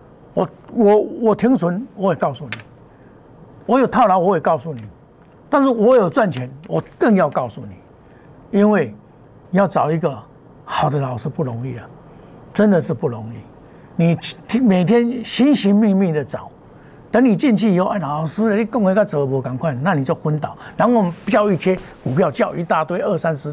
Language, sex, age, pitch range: Chinese, male, 50-69, 145-200 Hz